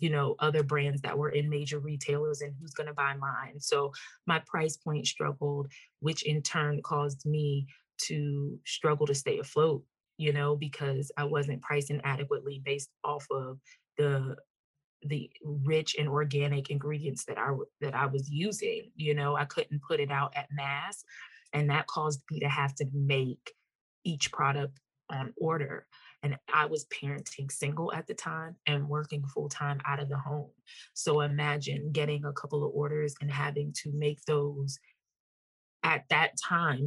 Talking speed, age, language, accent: 170 wpm, 20-39, English, American